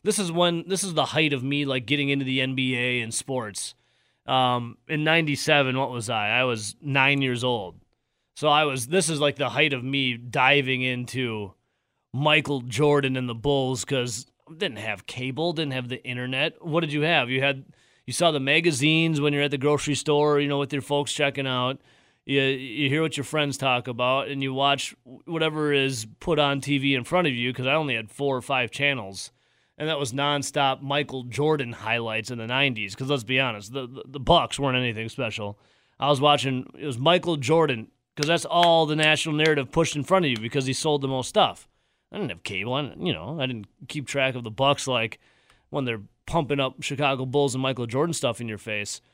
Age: 30-49